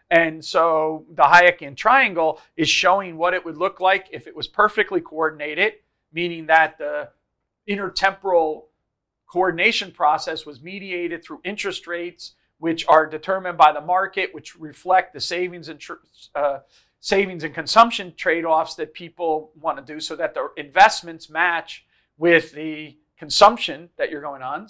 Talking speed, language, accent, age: 150 wpm, English, American, 40-59